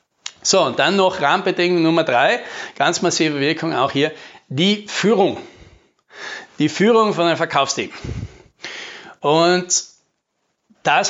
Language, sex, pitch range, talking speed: German, male, 145-190 Hz, 115 wpm